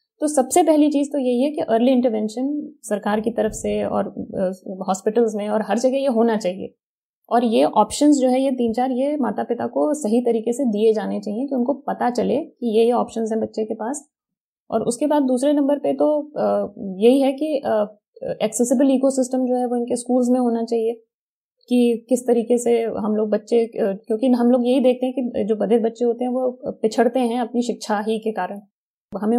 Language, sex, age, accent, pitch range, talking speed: Hindi, female, 20-39, native, 215-255 Hz, 215 wpm